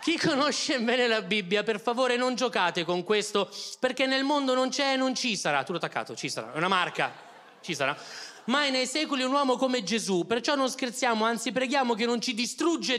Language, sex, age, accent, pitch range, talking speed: Italian, male, 30-49, native, 170-265 Hz, 210 wpm